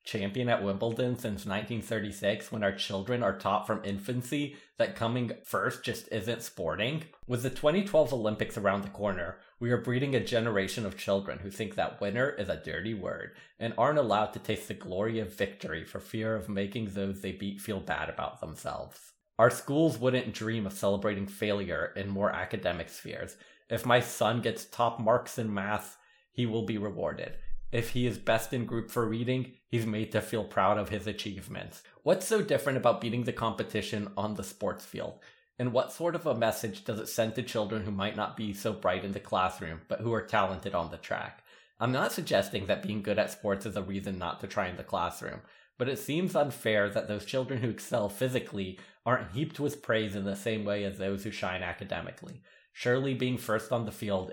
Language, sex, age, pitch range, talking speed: English, male, 30-49, 100-120 Hz, 200 wpm